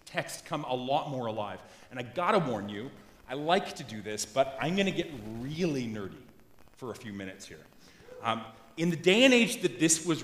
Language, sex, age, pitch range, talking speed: English, male, 30-49, 125-170 Hz, 225 wpm